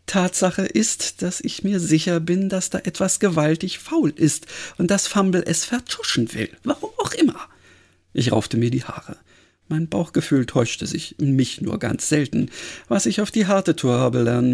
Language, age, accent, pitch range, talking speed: German, 50-69, German, 130-205 Hz, 180 wpm